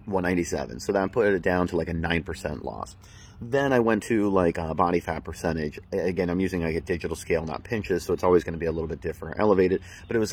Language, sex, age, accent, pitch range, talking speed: English, male, 30-49, American, 85-100 Hz, 255 wpm